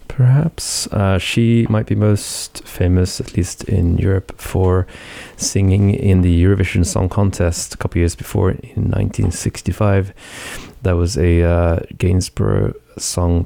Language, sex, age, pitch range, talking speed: English, male, 20-39, 90-110 Hz, 135 wpm